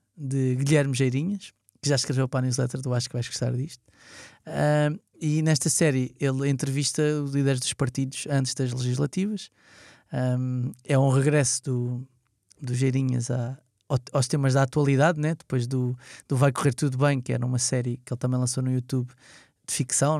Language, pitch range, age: Portuguese, 125-145 Hz, 20-39